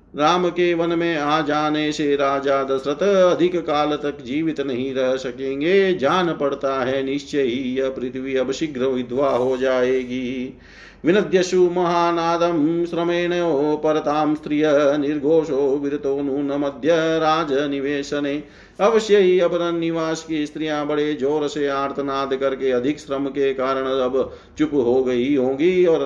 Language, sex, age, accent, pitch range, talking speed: Hindi, male, 50-69, native, 130-170 Hz, 135 wpm